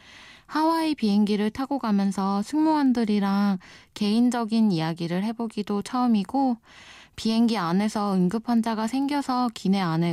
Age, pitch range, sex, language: 20-39, 185-250 Hz, female, Korean